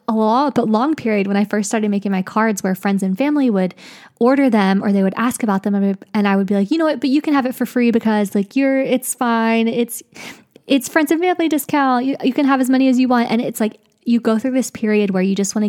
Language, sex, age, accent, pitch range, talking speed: English, female, 20-39, American, 200-245 Hz, 285 wpm